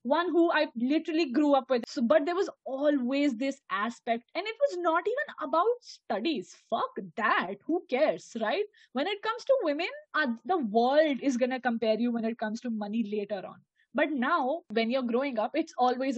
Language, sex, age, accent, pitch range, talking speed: English, female, 20-39, Indian, 230-315 Hz, 200 wpm